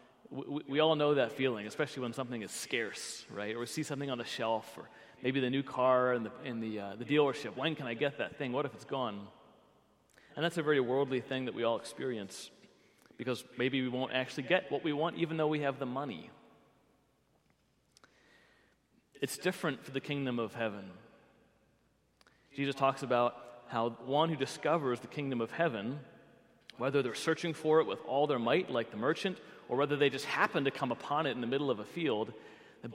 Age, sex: 30-49, male